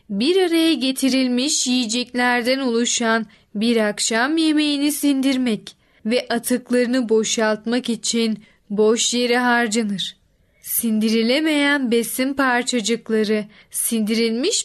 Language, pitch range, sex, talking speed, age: Turkish, 225-280 Hz, female, 80 wpm, 10-29